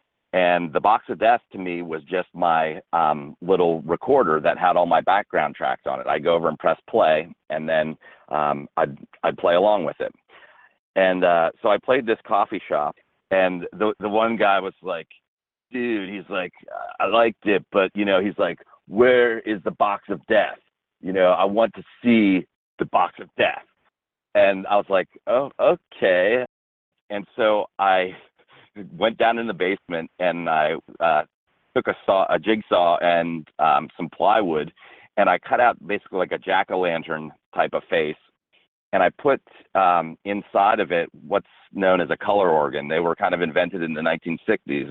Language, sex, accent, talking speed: English, male, American, 180 wpm